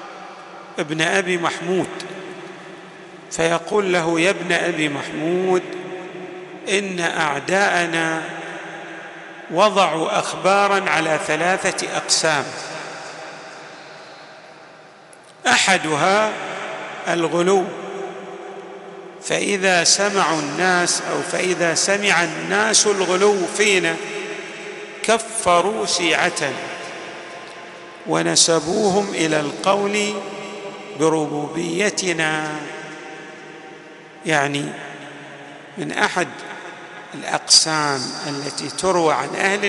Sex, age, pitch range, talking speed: male, 50-69, 160-195 Hz, 60 wpm